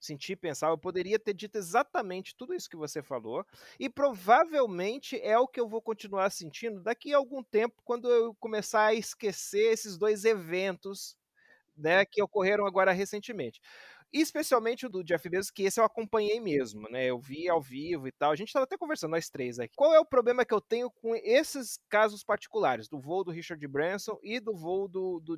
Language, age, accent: Portuguese, 30-49, Brazilian